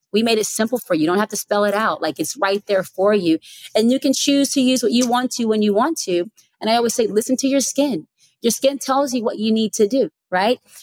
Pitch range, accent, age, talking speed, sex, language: 175-220 Hz, American, 30-49, 285 wpm, female, English